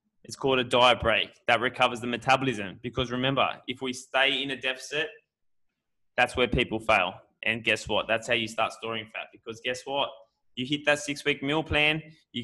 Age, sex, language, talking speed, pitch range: 20-39, male, English, 195 wpm, 115-140 Hz